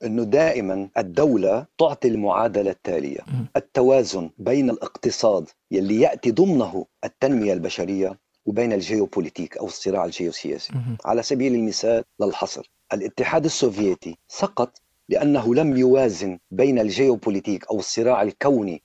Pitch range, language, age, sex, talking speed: 125-170 Hz, Arabic, 50-69, male, 110 wpm